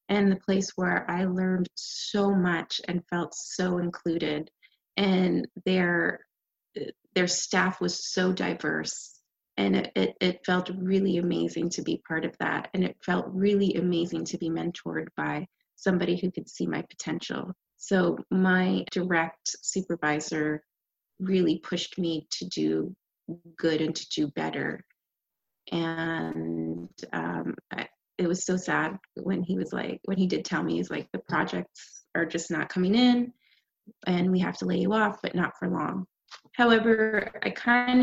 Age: 30-49